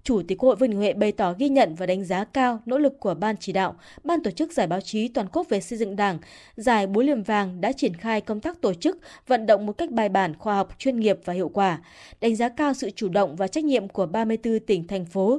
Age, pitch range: 20-39, 200-270 Hz